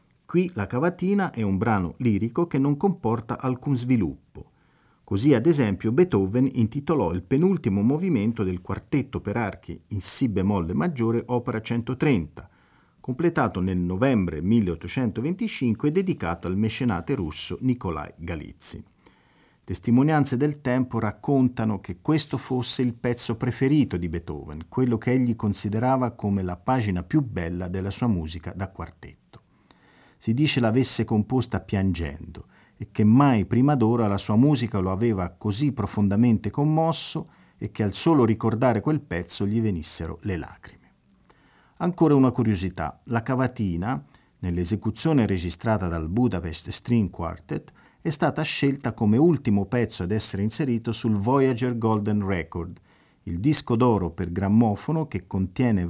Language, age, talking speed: Italian, 50-69, 135 wpm